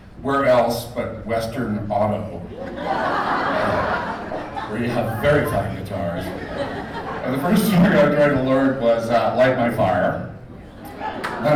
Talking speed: 135 wpm